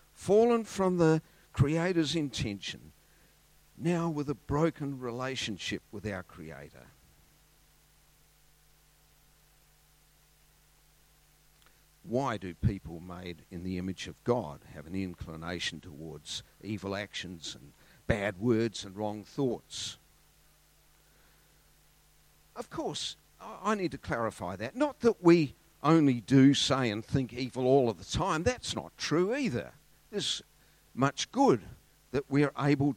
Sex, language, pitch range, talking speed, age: male, English, 105-160 Hz, 120 wpm, 50-69